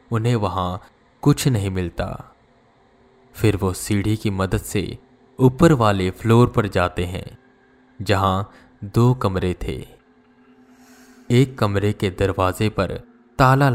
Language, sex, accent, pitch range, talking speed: Hindi, male, native, 100-130 Hz, 120 wpm